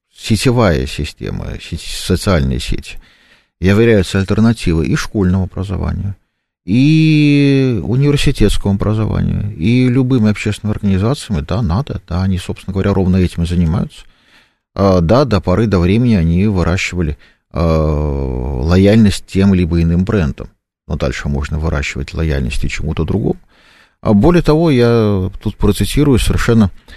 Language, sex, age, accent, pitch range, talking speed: Russian, male, 50-69, native, 80-110 Hz, 120 wpm